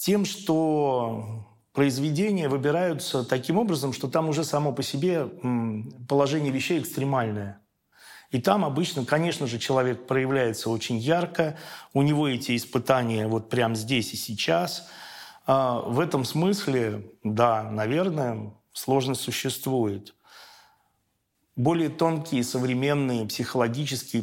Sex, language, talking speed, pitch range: male, Russian, 110 wpm, 120-150 Hz